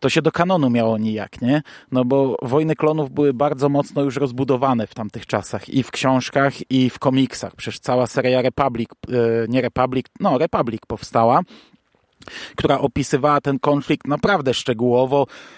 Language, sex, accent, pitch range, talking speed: Polish, male, native, 125-145 Hz, 155 wpm